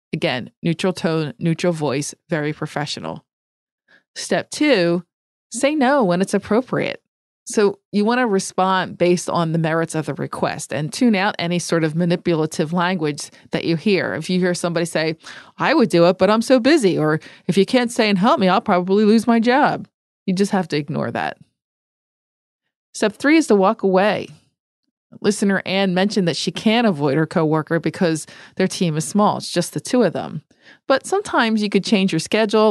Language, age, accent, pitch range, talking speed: English, 30-49, American, 160-210 Hz, 185 wpm